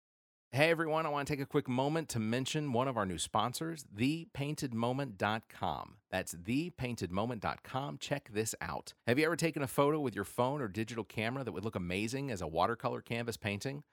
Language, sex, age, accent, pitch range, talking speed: English, male, 40-59, American, 95-140 Hz, 185 wpm